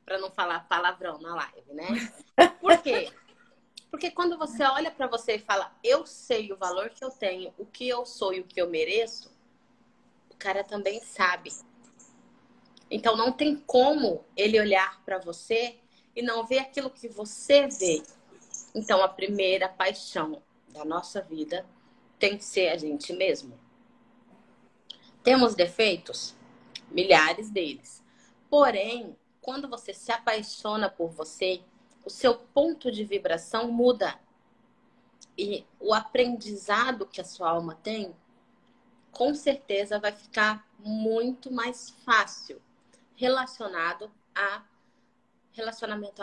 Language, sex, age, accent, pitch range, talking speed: Portuguese, female, 20-39, Brazilian, 195-250 Hz, 130 wpm